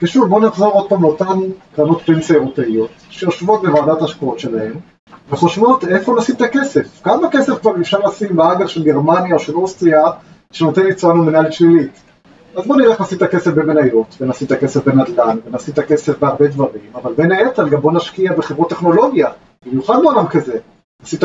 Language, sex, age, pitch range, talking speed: Hebrew, male, 30-49, 145-185 Hz, 180 wpm